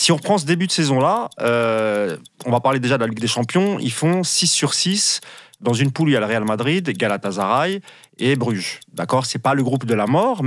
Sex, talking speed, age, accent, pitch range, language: male, 240 wpm, 30-49, French, 120-170 Hz, French